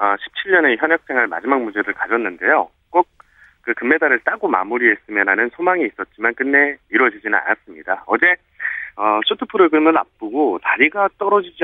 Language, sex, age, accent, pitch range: Korean, male, 40-59, native, 125-180 Hz